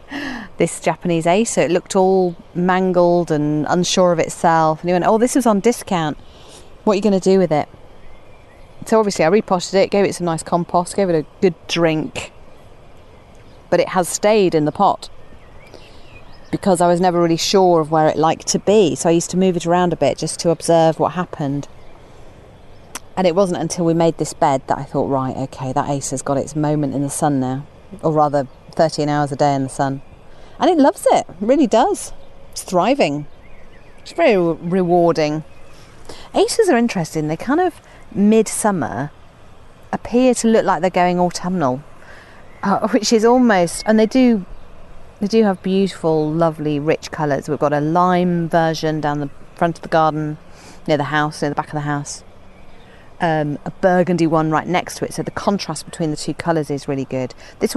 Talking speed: 195 wpm